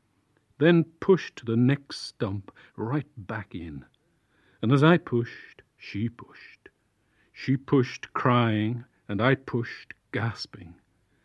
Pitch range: 105-140 Hz